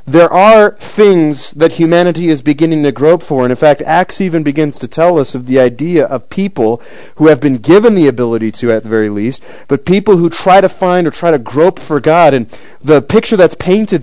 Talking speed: 220 wpm